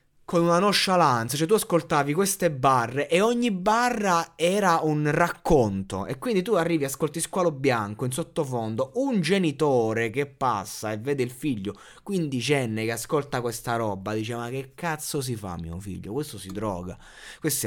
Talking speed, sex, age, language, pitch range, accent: 165 wpm, male, 20-39, Italian, 115-175 Hz, native